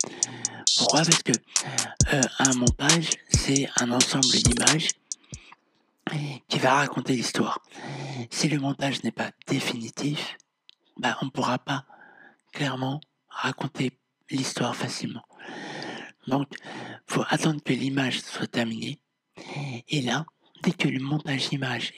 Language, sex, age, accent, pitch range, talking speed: French, male, 60-79, French, 125-145 Hz, 120 wpm